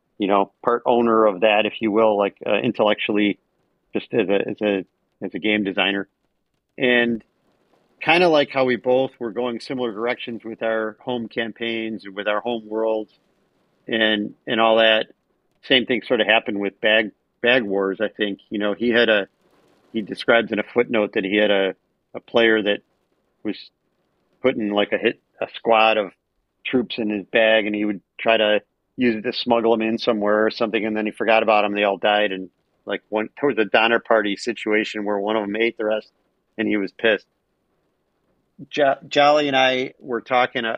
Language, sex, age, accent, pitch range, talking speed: English, male, 40-59, American, 105-120 Hz, 195 wpm